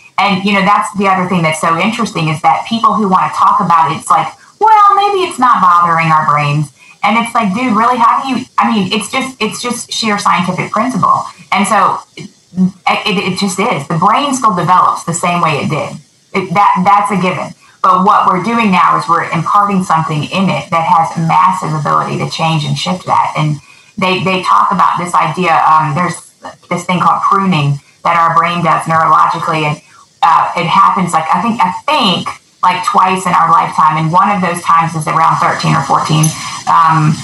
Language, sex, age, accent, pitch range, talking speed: English, female, 20-39, American, 165-200 Hz, 210 wpm